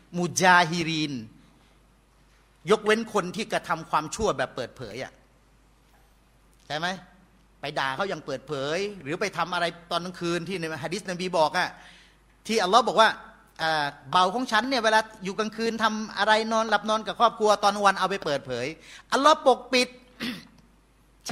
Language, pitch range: Thai, 165-220 Hz